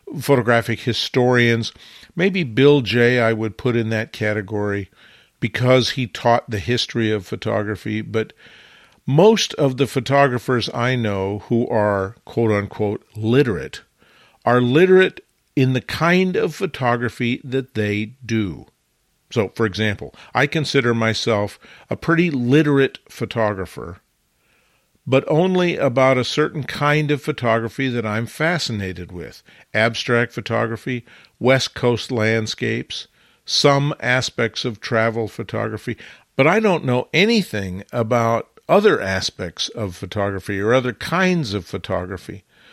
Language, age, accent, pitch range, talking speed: English, 50-69, American, 110-145 Hz, 120 wpm